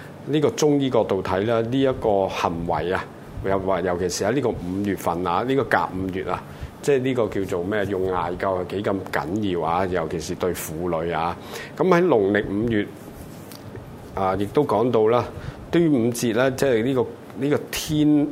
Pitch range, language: 95-130 Hz, Chinese